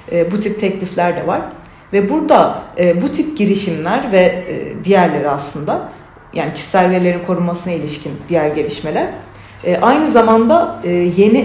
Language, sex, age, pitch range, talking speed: Turkish, female, 40-59, 175-240 Hz, 120 wpm